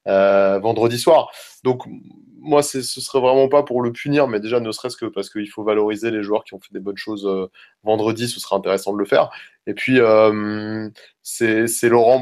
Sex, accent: male, French